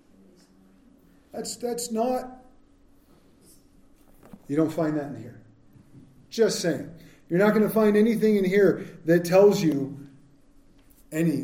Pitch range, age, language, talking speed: 155-215 Hz, 50-69, English, 120 wpm